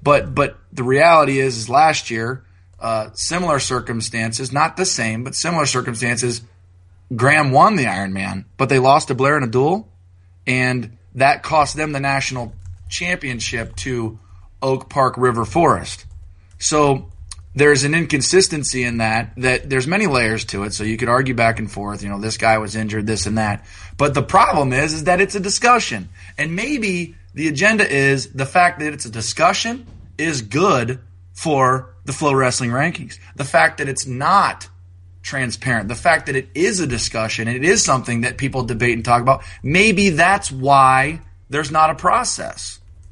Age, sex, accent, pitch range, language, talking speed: 20-39, male, American, 105-145 Hz, English, 175 wpm